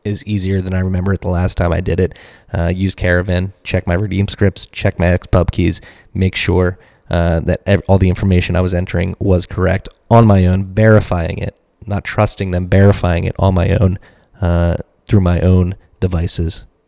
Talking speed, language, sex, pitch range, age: 190 wpm, English, male, 90-100 Hz, 20-39